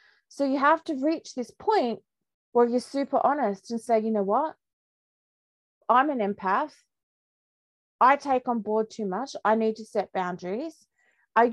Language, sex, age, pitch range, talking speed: English, female, 30-49, 195-250 Hz, 160 wpm